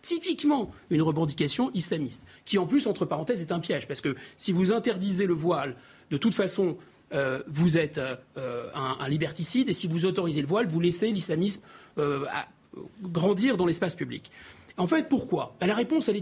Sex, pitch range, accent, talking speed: male, 165-240 Hz, French, 180 wpm